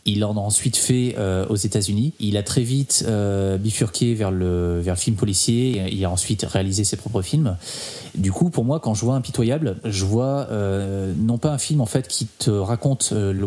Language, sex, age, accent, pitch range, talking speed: French, male, 20-39, French, 100-120 Hz, 225 wpm